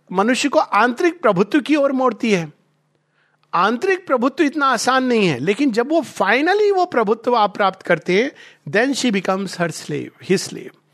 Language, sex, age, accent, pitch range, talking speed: Hindi, male, 50-69, native, 170-240 Hz, 160 wpm